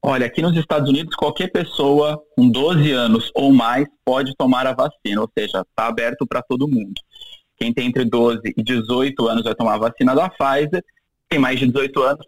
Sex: male